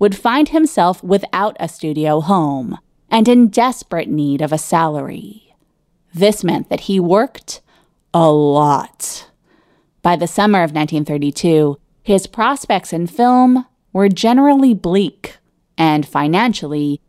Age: 30-49